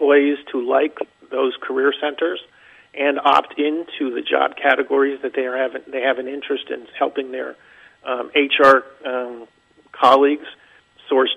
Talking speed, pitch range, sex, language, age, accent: 150 wpm, 135-160 Hz, male, English, 50-69, American